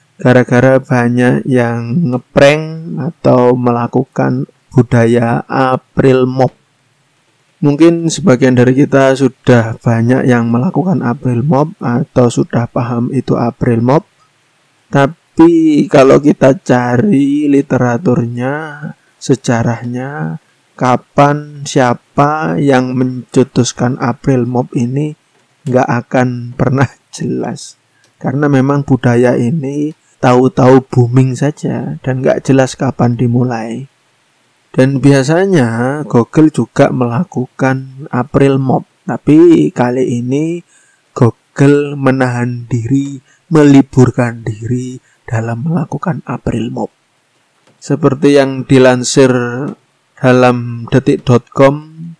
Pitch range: 125-140 Hz